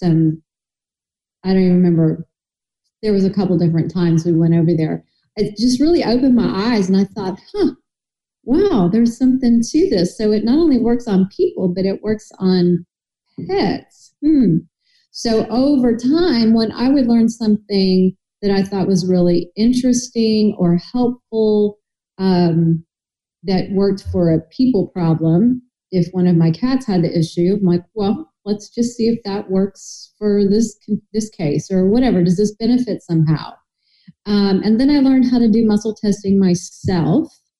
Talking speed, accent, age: 165 wpm, American, 40-59